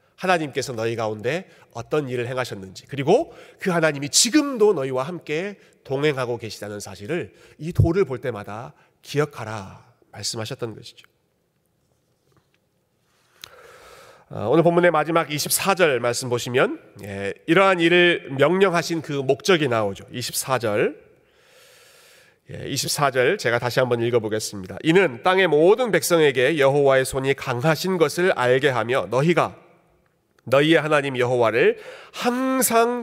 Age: 40-59